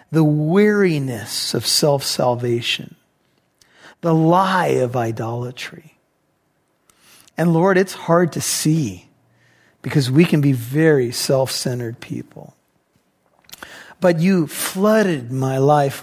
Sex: male